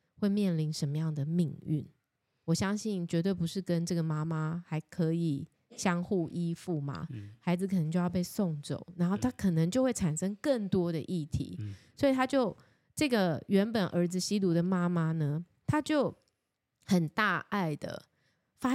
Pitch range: 160-210 Hz